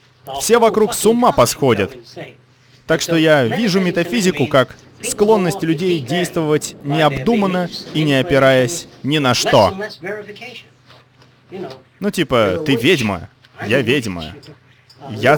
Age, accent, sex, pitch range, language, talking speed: 30-49, native, male, 125-175 Hz, Russian, 110 wpm